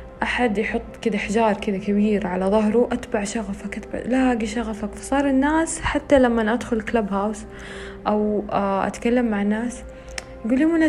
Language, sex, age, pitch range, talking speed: Arabic, female, 20-39, 200-250 Hz, 140 wpm